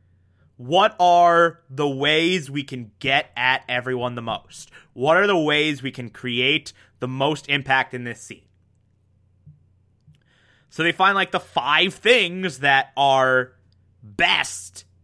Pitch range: 105-155 Hz